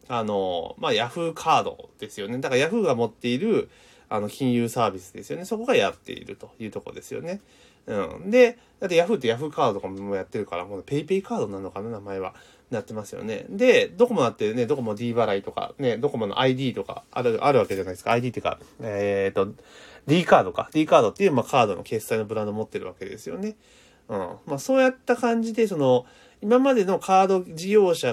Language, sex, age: Japanese, male, 30-49